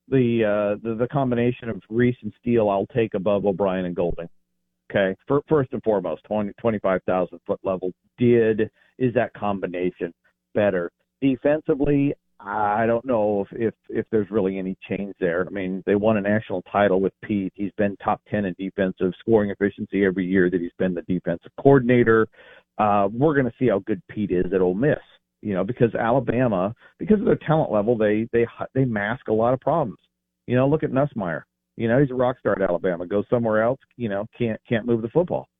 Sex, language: male, English